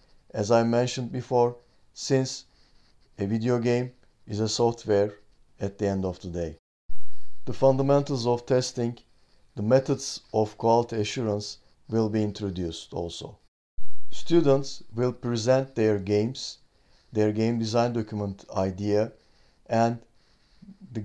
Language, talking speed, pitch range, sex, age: Turkish, 120 wpm, 100-130 Hz, male, 50-69